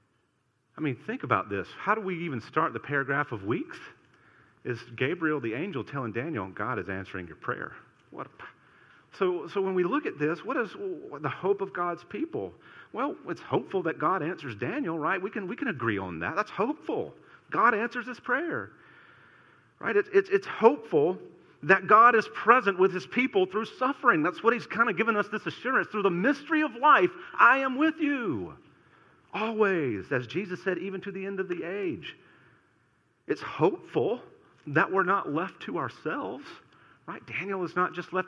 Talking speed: 190 wpm